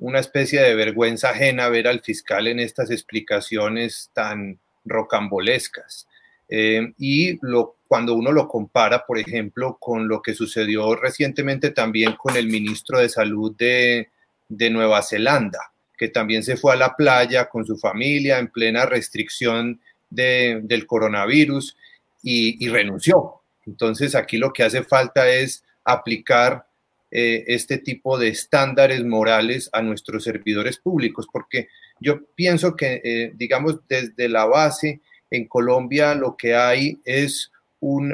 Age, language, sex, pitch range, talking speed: 30-49, Spanish, male, 115-140 Hz, 140 wpm